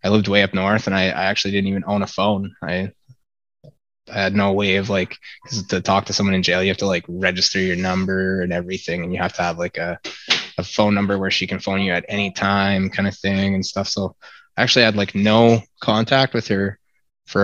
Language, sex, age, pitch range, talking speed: English, male, 20-39, 95-110 Hz, 240 wpm